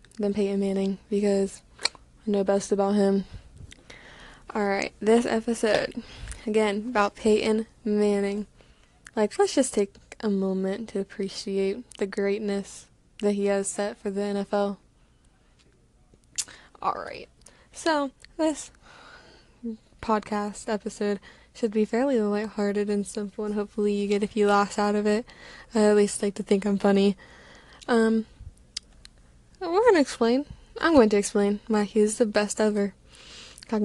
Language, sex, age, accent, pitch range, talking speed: English, female, 10-29, American, 205-235 Hz, 135 wpm